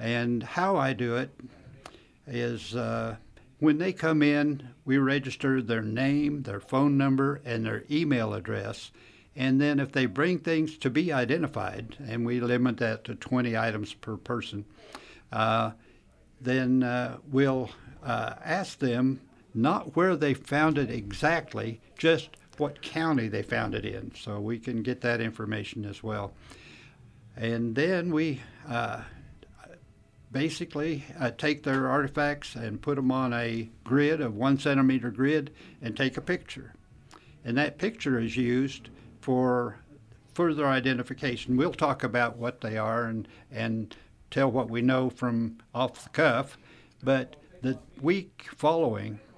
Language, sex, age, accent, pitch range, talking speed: English, male, 60-79, American, 115-145 Hz, 145 wpm